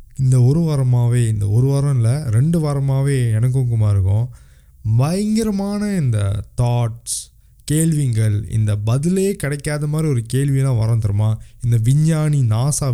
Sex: male